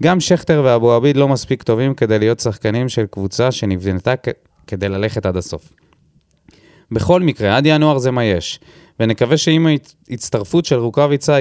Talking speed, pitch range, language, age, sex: 160 wpm, 100-140 Hz, Hebrew, 20-39, male